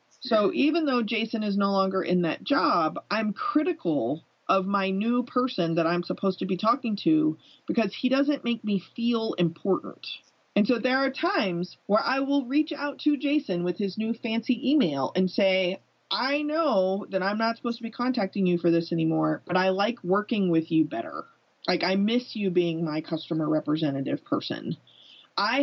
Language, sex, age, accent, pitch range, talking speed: English, female, 30-49, American, 170-240 Hz, 185 wpm